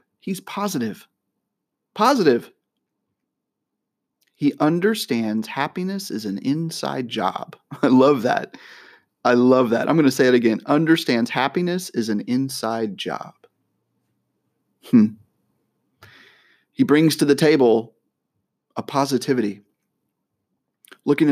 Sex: male